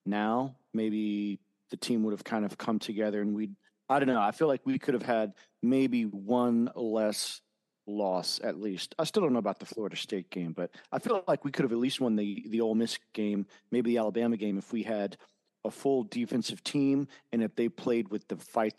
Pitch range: 105-135 Hz